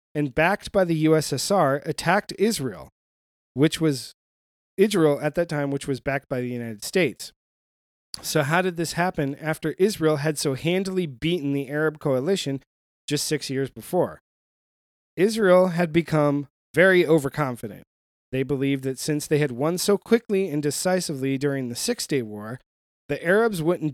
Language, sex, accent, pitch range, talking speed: English, male, American, 140-185 Hz, 155 wpm